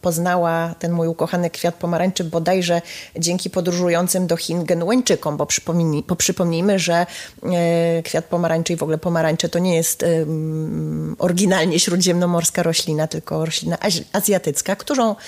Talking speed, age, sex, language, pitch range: 120 wpm, 20-39, female, Polish, 160-185 Hz